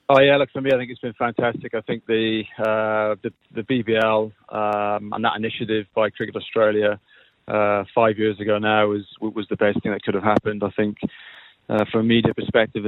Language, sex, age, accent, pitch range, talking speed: English, male, 20-39, British, 110-120 Hz, 210 wpm